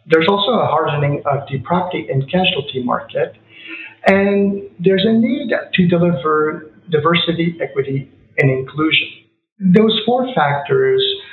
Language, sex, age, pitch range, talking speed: English, male, 50-69, 135-180 Hz, 120 wpm